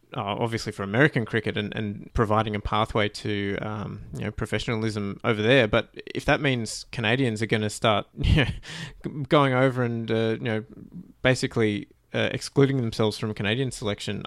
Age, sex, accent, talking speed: 20-39, male, Australian, 170 wpm